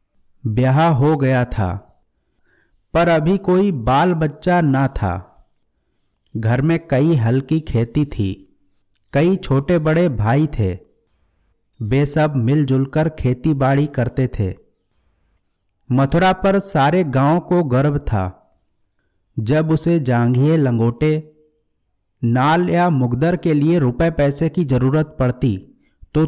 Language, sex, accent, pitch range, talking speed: Hindi, male, native, 100-155 Hz, 115 wpm